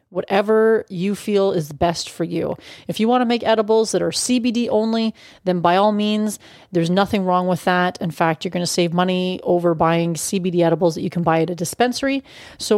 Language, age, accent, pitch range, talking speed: English, 30-49, American, 175-220 Hz, 210 wpm